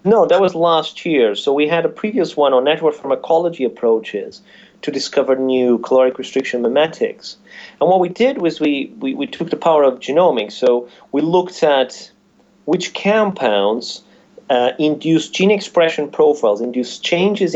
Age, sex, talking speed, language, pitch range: 30-49, male, 160 wpm, English, 125-180 Hz